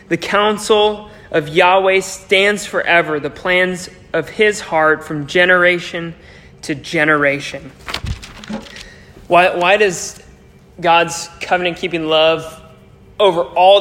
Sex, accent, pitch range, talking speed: male, American, 165-205 Hz, 105 wpm